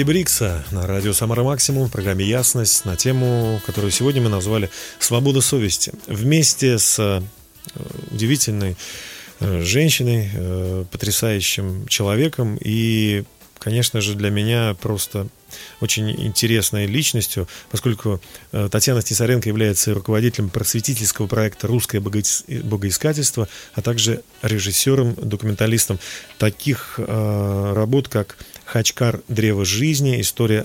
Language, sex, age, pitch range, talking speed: Russian, male, 30-49, 105-120 Hz, 100 wpm